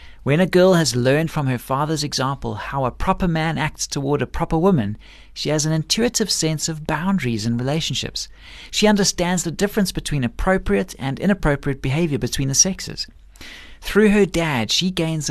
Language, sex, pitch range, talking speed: English, male, 125-175 Hz, 175 wpm